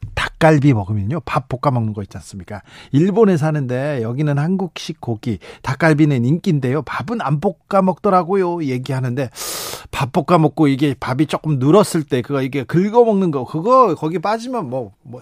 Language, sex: Korean, male